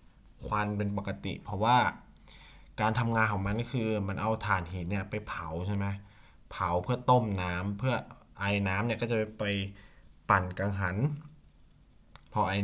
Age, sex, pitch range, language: 20-39, male, 90-120 Hz, Thai